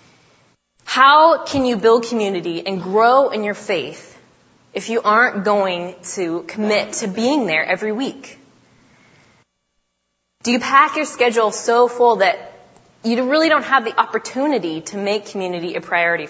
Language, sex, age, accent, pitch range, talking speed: English, female, 20-39, American, 185-265 Hz, 145 wpm